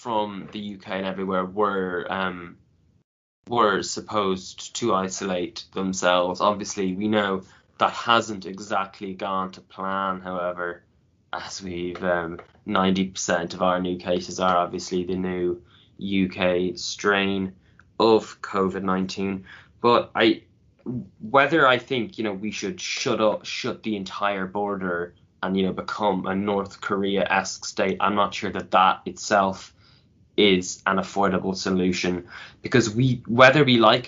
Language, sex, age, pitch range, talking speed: English, male, 10-29, 95-105 Hz, 135 wpm